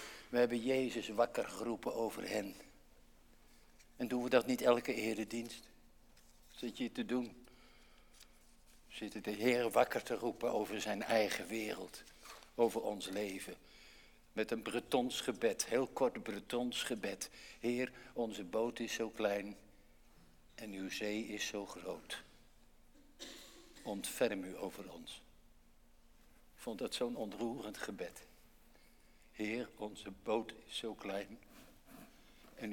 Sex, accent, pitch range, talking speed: male, Dutch, 105-145 Hz, 125 wpm